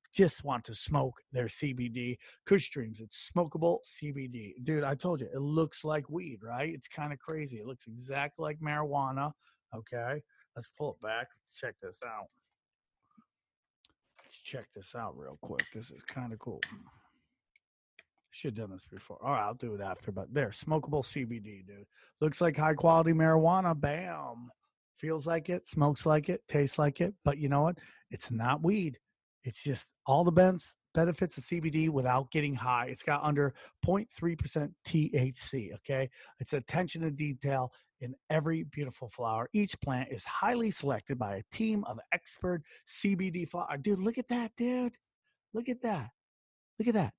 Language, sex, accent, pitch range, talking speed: English, male, American, 125-165 Hz, 170 wpm